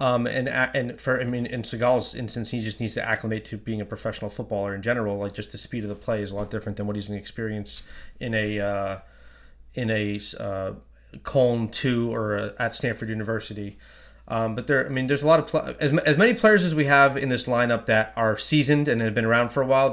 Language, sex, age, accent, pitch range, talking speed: English, male, 20-39, American, 110-140 Hz, 235 wpm